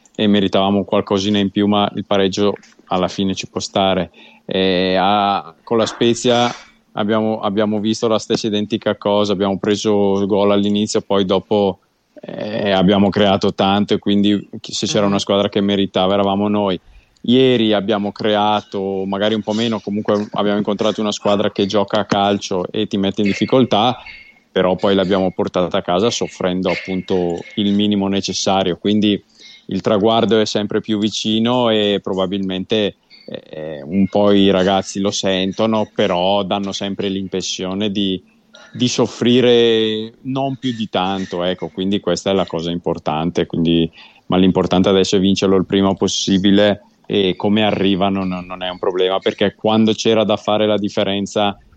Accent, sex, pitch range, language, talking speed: native, male, 95-105 Hz, Italian, 155 wpm